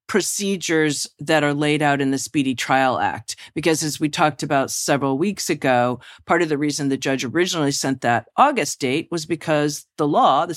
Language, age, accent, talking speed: English, 40-59, American, 195 wpm